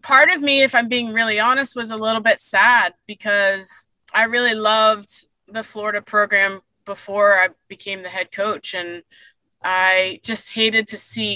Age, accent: 20-39, American